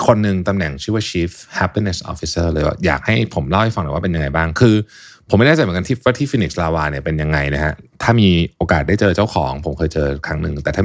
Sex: male